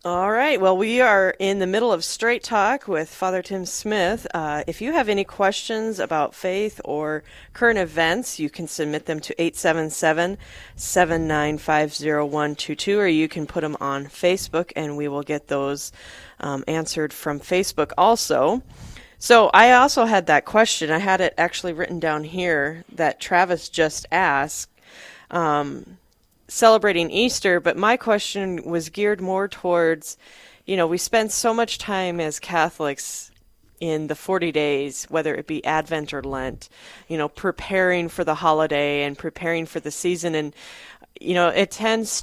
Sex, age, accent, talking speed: female, 40-59, American, 160 wpm